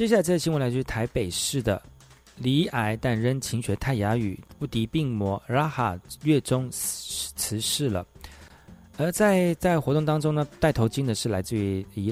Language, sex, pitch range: Chinese, male, 105-135 Hz